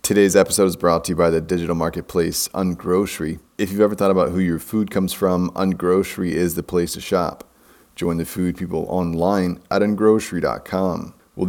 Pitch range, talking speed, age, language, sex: 85-90 Hz, 185 wpm, 30-49, English, male